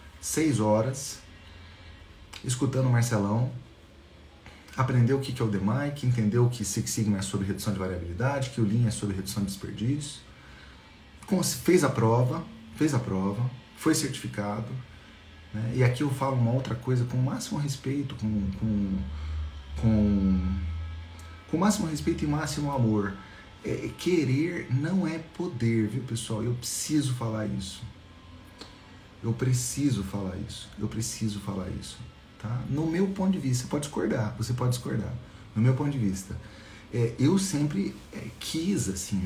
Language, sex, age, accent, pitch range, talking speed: Portuguese, male, 40-59, Brazilian, 95-130 Hz, 155 wpm